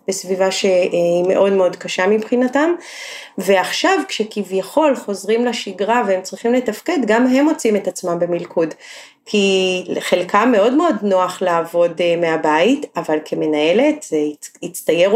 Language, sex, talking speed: Hebrew, female, 120 wpm